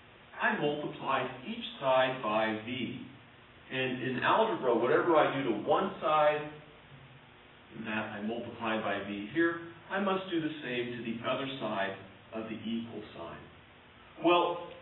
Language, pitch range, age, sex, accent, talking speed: English, 115-155 Hz, 50-69, male, American, 145 wpm